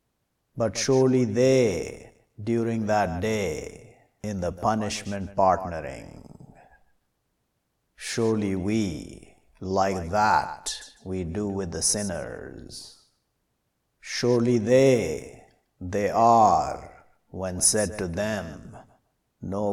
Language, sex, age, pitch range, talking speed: English, male, 50-69, 95-125 Hz, 85 wpm